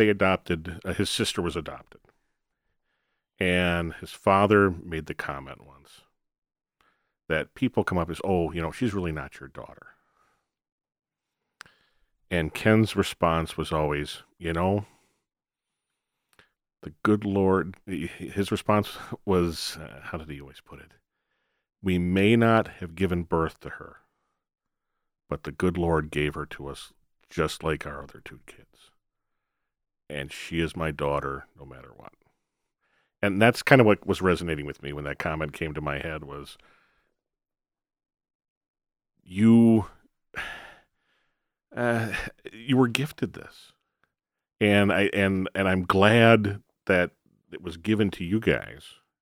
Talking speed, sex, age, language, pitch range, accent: 140 wpm, male, 40-59, English, 80-100 Hz, American